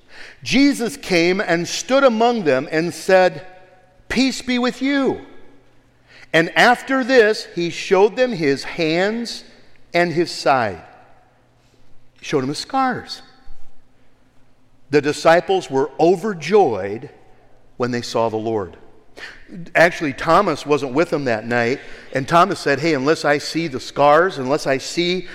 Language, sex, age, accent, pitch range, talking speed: English, male, 50-69, American, 135-225 Hz, 135 wpm